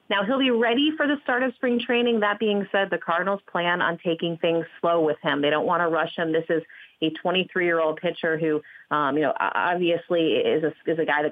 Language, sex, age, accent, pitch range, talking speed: English, female, 30-49, American, 160-210 Hz, 230 wpm